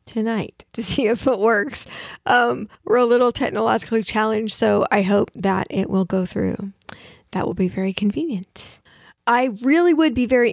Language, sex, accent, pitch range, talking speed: English, female, American, 205-240 Hz, 170 wpm